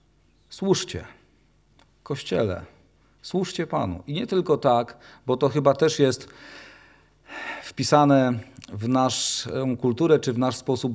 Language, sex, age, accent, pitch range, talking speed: Polish, male, 40-59, native, 120-140 Hz, 115 wpm